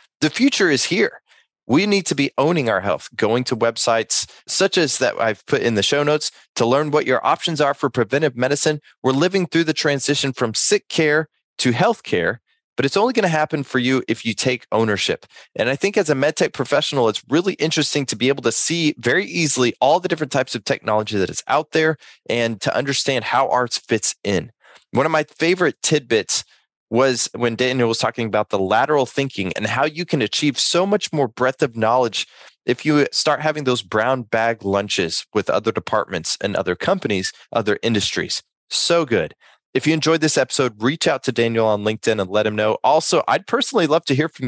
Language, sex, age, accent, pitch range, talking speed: English, male, 20-39, American, 115-155 Hz, 210 wpm